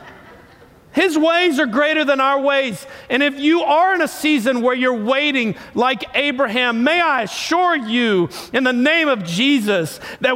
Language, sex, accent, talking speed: English, male, American, 170 wpm